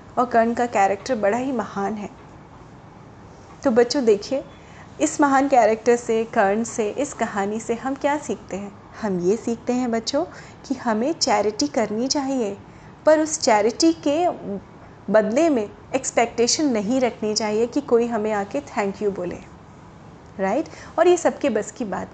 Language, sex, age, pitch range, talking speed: Hindi, female, 30-49, 210-280 Hz, 155 wpm